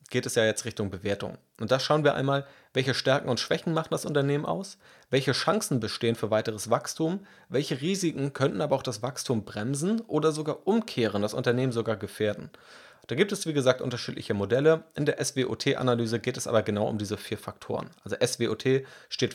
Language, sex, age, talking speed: German, male, 30-49, 190 wpm